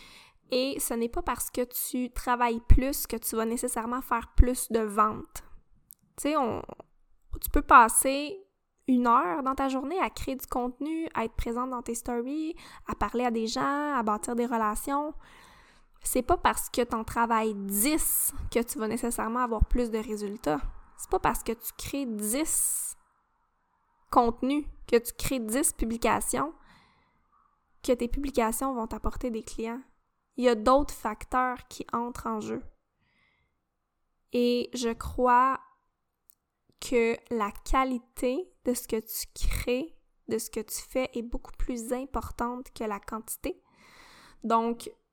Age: 20-39